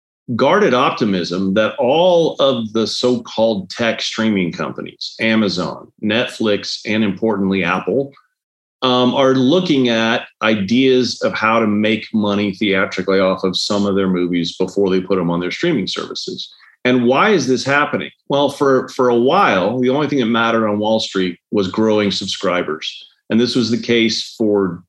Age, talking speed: 40-59, 160 wpm